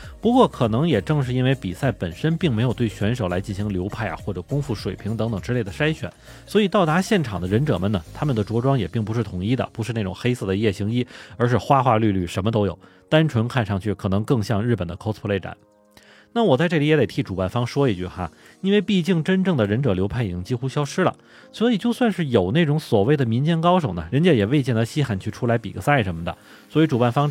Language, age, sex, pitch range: Chinese, 30-49, male, 100-140 Hz